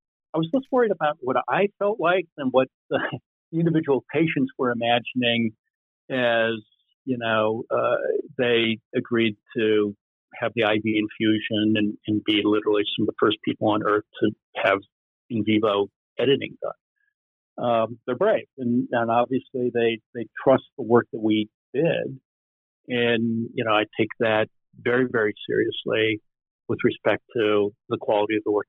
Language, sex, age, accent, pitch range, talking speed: English, male, 50-69, American, 110-140 Hz, 155 wpm